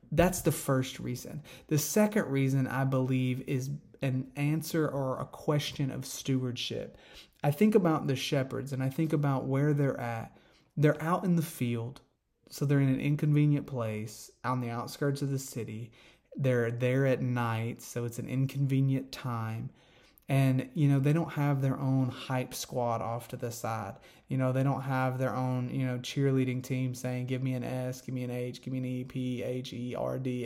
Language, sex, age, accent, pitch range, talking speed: English, male, 30-49, American, 125-140 Hz, 195 wpm